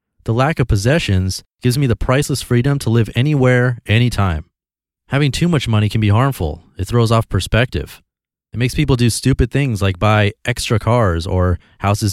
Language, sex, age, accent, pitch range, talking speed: English, male, 30-49, American, 95-125 Hz, 180 wpm